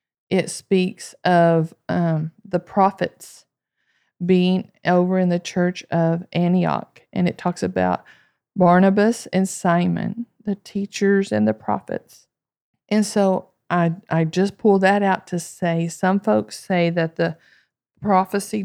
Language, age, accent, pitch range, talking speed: English, 50-69, American, 170-200 Hz, 130 wpm